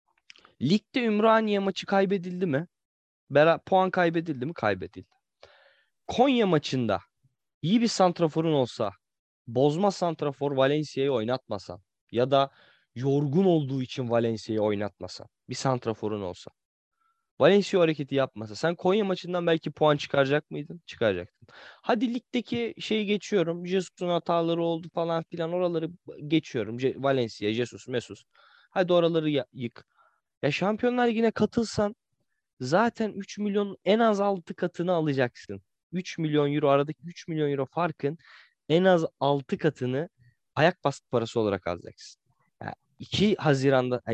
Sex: male